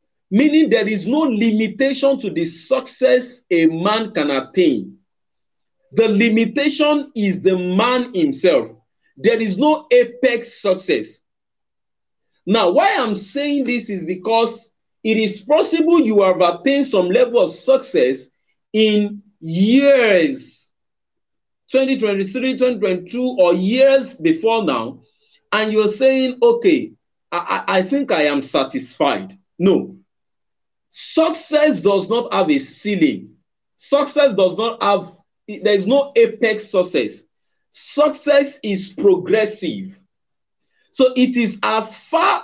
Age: 40-59